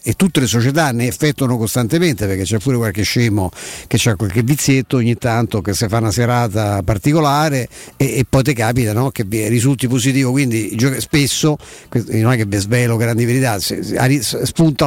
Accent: native